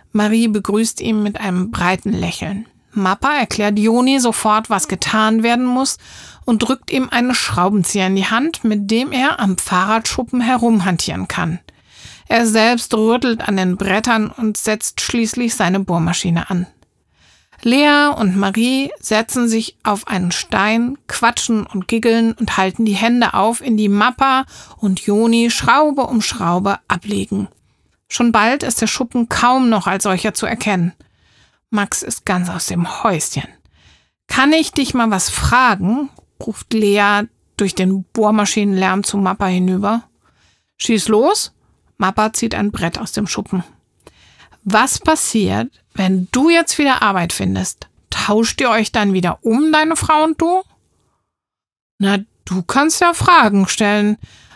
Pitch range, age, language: 195-240 Hz, 50-69, German